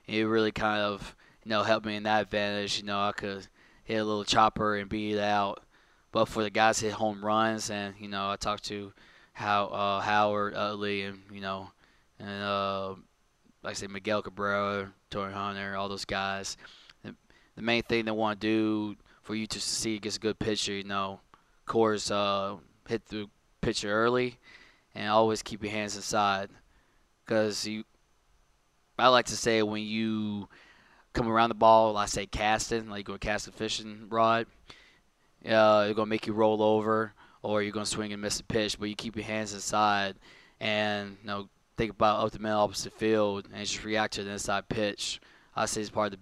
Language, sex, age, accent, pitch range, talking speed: English, male, 20-39, American, 100-110 Hz, 205 wpm